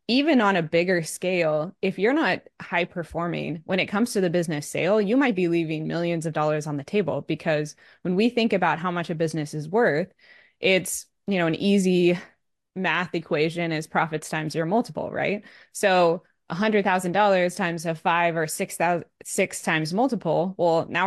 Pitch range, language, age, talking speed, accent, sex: 155-185 Hz, English, 20-39, 180 wpm, American, female